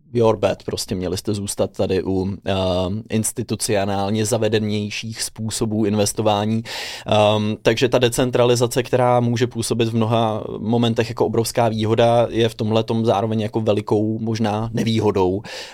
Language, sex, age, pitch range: Czech, male, 20-39, 105-115 Hz